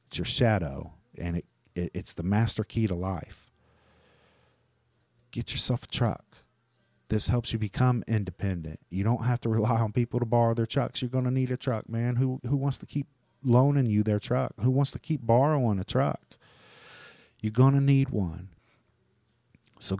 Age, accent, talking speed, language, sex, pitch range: 40-59, American, 185 wpm, English, male, 105-120 Hz